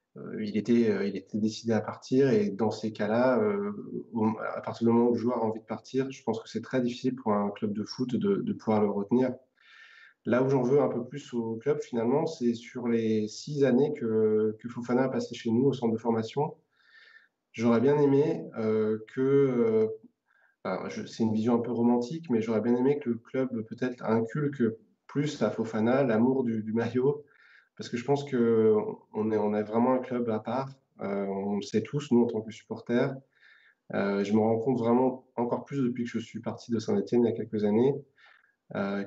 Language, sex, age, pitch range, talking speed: French, male, 20-39, 110-135 Hz, 205 wpm